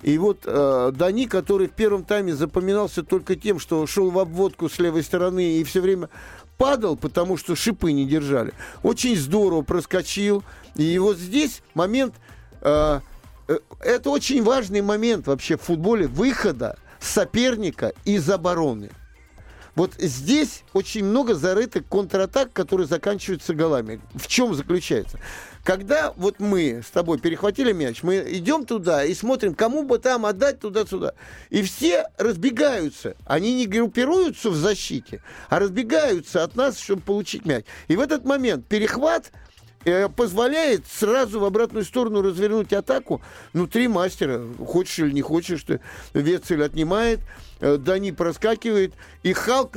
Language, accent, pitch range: Russian, native, 170-225 Hz